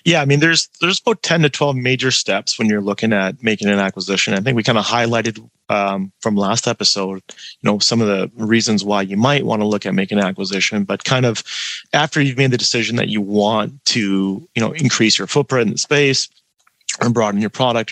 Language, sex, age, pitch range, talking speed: English, male, 30-49, 105-130 Hz, 230 wpm